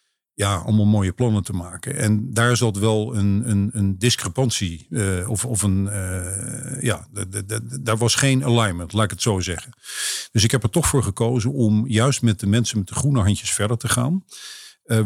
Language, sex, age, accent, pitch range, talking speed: Dutch, male, 50-69, Dutch, 100-120 Hz, 215 wpm